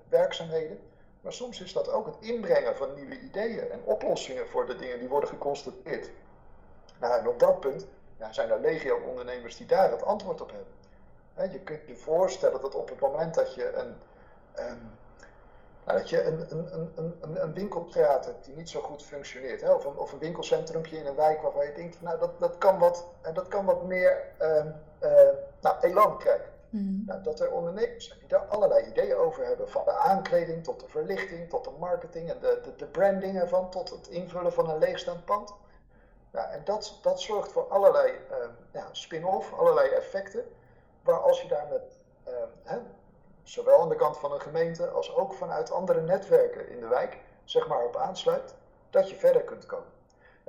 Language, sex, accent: Dutch, male, Dutch